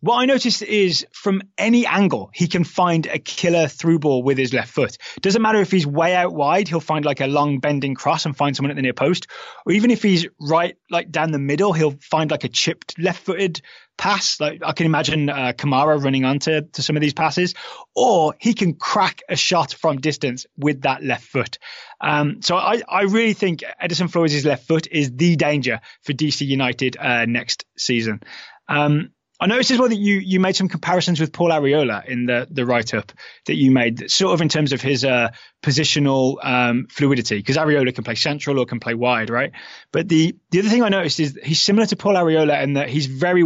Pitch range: 135-180 Hz